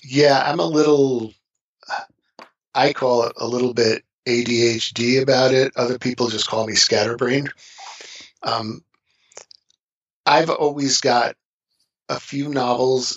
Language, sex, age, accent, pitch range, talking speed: English, male, 40-59, American, 115-140 Hz, 120 wpm